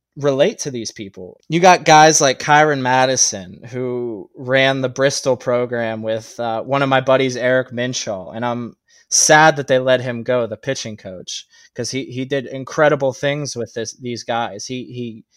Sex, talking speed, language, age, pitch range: male, 180 wpm, English, 20-39, 120-140 Hz